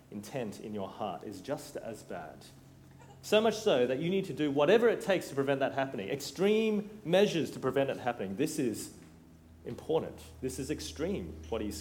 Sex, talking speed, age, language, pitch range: male, 190 wpm, 30-49, English, 115-175 Hz